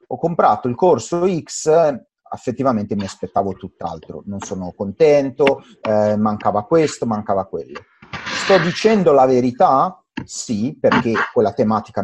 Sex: male